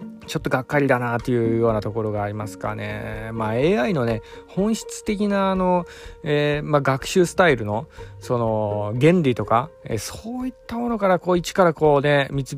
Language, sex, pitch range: Japanese, male, 115-180 Hz